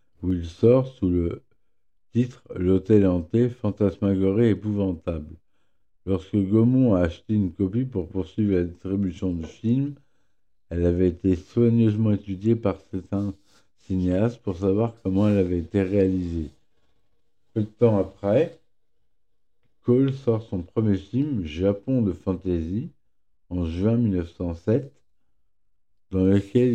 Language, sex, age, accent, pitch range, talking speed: French, male, 60-79, French, 90-110 Hz, 130 wpm